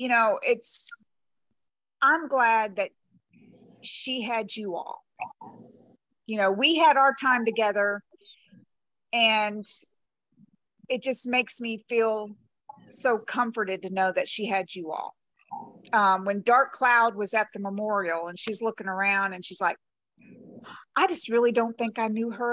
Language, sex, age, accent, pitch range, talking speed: English, female, 50-69, American, 210-275 Hz, 145 wpm